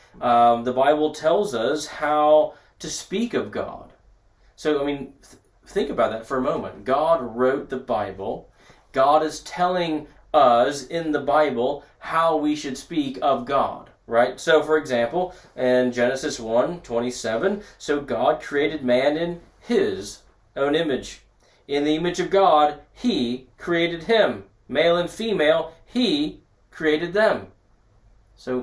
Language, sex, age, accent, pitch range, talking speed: English, male, 30-49, American, 120-170 Hz, 140 wpm